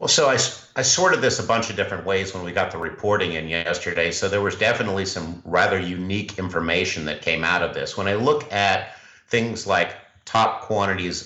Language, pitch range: English, 80-100 Hz